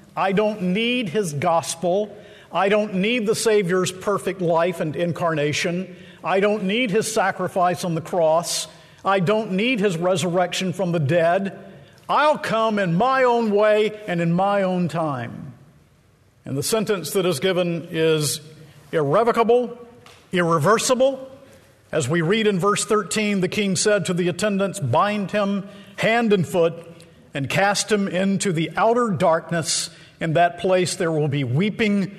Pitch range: 165-205 Hz